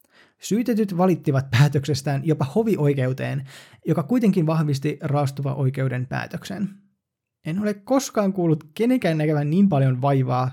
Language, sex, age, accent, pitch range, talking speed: Finnish, male, 20-39, native, 130-170 Hz, 115 wpm